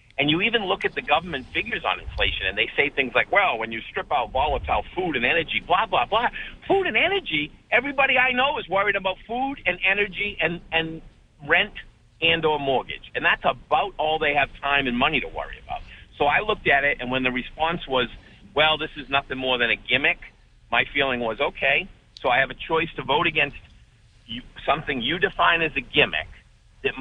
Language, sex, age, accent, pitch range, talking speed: English, male, 50-69, American, 125-175 Hz, 210 wpm